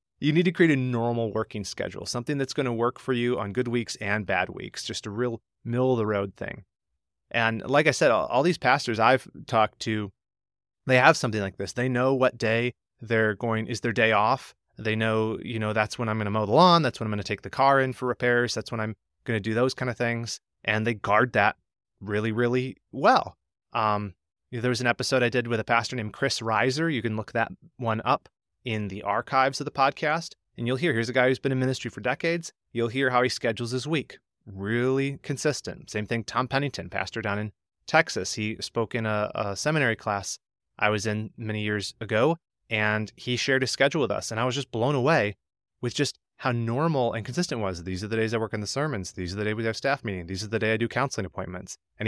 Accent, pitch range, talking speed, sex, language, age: American, 105-130 Hz, 235 wpm, male, English, 30-49